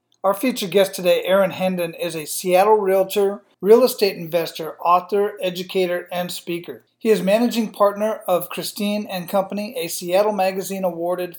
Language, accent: English, American